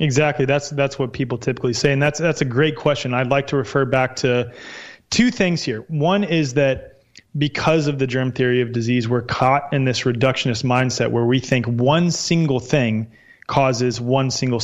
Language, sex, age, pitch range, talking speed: English, male, 30-49, 125-150 Hz, 195 wpm